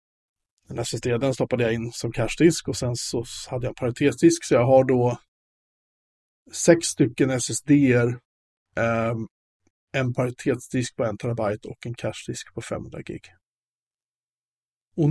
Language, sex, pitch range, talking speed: Swedish, male, 115-135 Hz, 130 wpm